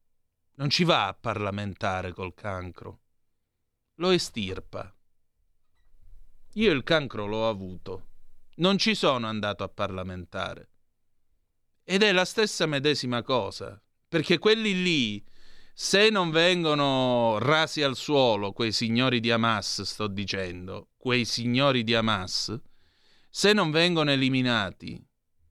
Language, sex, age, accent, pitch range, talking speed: Italian, male, 30-49, native, 100-155 Hz, 115 wpm